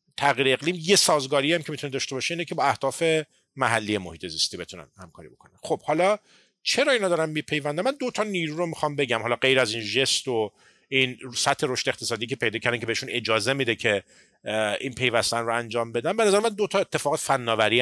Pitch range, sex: 115-165 Hz, male